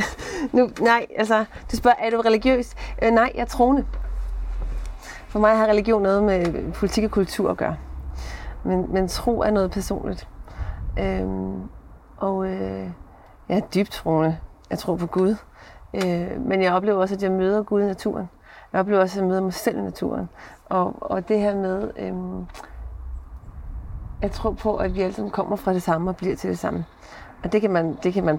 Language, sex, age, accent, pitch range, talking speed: Danish, female, 30-49, native, 170-215 Hz, 170 wpm